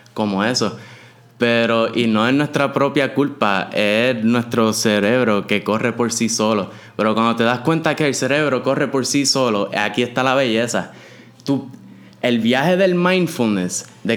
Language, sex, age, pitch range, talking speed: Spanish, male, 20-39, 115-140 Hz, 165 wpm